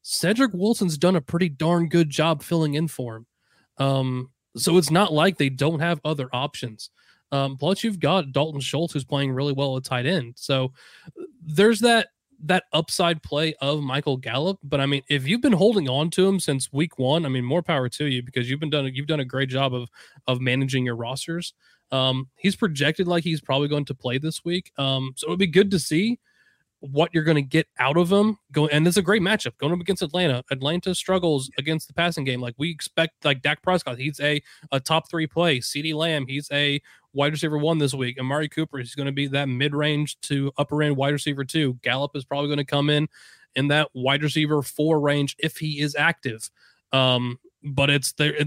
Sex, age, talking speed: male, 20-39, 215 wpm